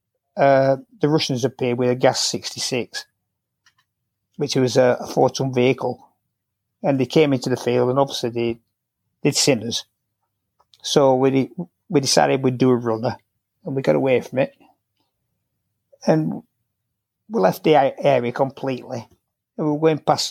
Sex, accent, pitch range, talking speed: male, British, 125-155 Hz, 150 wpm